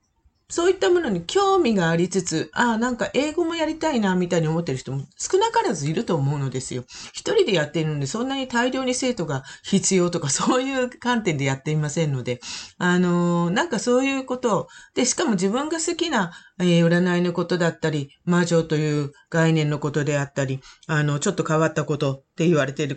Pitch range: 150-245 Hz